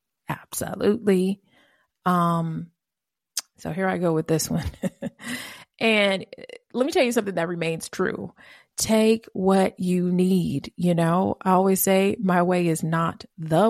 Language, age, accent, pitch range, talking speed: English, 30-49, American, 160-190 Hz, 140 wpm